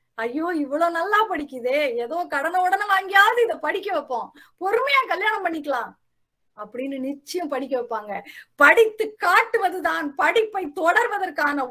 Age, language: 30-49, Tamil